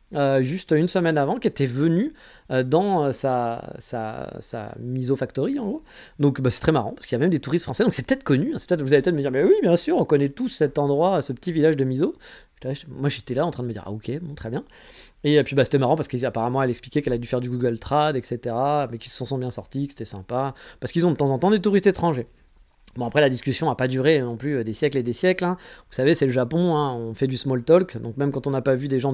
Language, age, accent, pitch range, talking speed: French, 20-39, French, 125-160 Hz, 290 wpm